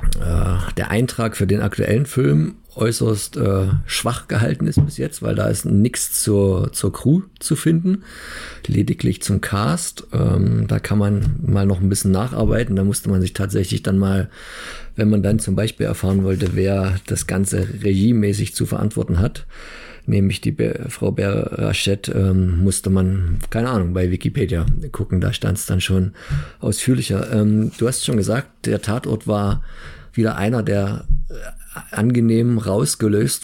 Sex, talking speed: male, 160 wpm